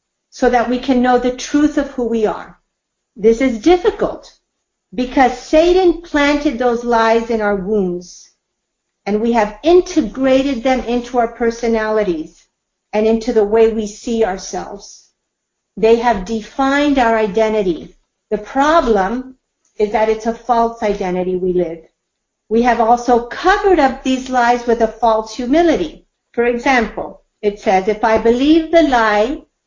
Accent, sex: American, female